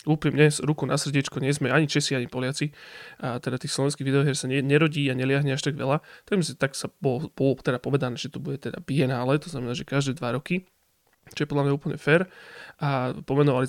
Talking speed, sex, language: 220 wpm, male, Slovak